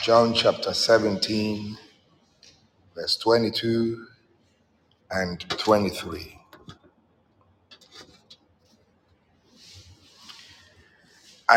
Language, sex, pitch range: English, male, 100-115 Hz